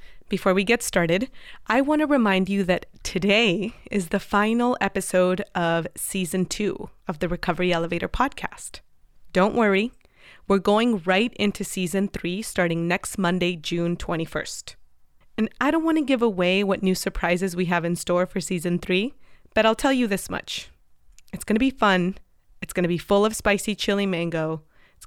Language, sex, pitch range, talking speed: English, female, 175-210 Hz, 175 wpm